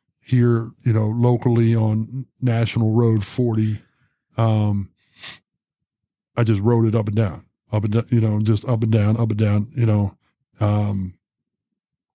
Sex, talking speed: male, 155 wpm